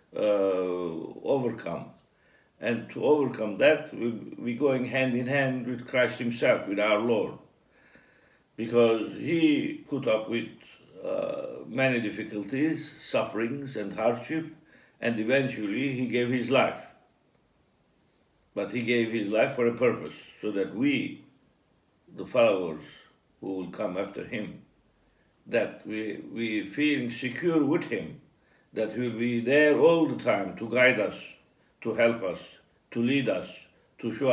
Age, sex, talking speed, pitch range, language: 60-79, male, 135 wpm, 115-140 Hz, English